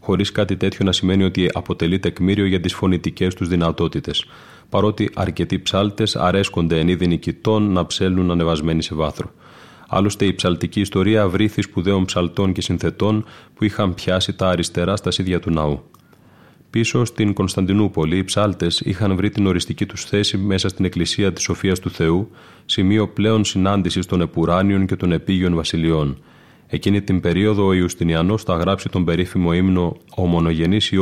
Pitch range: 85-100 Hz